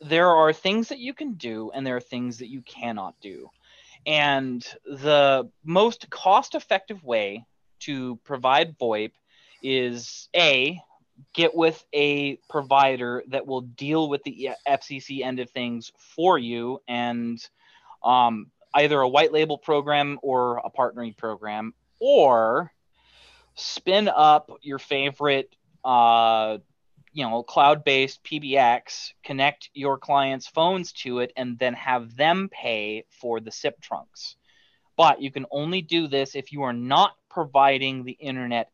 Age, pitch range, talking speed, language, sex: 20-39, 125-155 Hz, 135 wpm, English, male